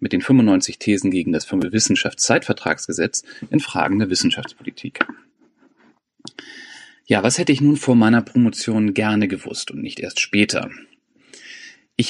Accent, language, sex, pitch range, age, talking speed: German, German, male, 110-150 Hz, 30-49, 130 wpm